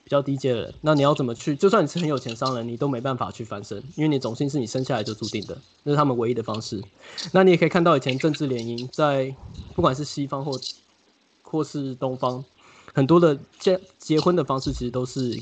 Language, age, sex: Chinese, 20-39, male